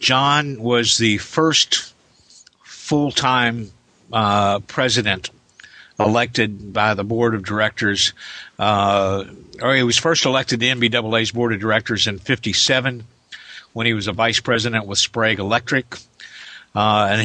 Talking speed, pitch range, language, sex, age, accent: 130 wpm, 105-120 Hz, English, male, 50-69, American